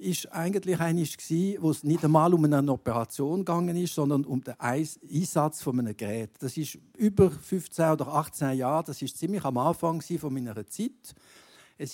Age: 60-79